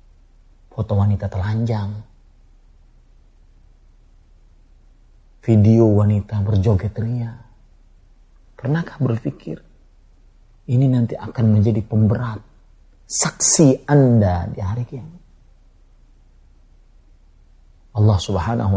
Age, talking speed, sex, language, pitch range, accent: 40-59, 65 wpm, male, Indonesian, 85-130 Hz, native